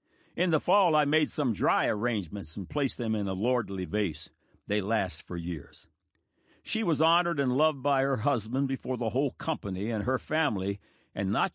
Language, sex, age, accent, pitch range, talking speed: English, male, 60-79, American, 100-140 Hz, 185 wpm